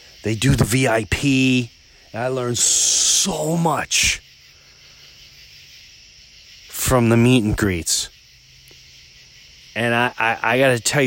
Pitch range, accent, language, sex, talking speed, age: 90-145 Hz, American, English, male, 105 wpm, 40-59